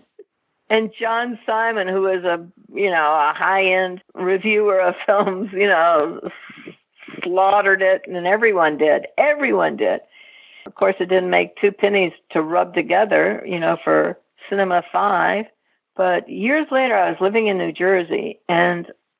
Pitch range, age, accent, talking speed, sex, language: 180-235 Hz, 60-79, American, 150 wpm, female, English